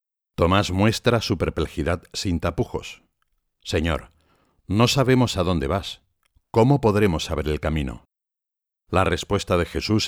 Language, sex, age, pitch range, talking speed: Spanish, male, 60-79, 80-110 Hz, 125 wpm